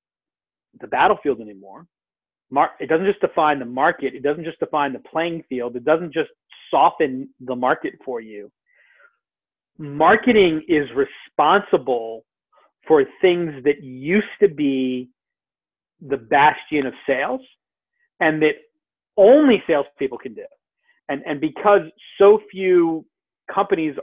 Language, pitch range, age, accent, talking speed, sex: English, 135-190 Hz, 40-59, American, 125 wpm, male